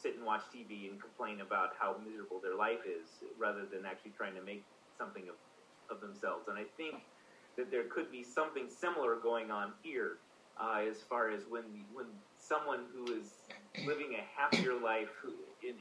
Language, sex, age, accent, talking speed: English, male, 30-49, American, 180 wpm